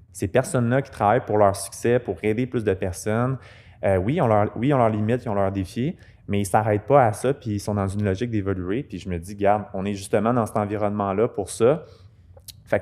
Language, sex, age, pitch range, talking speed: French, male, 20-39, 95-115 Hz, 250 wpm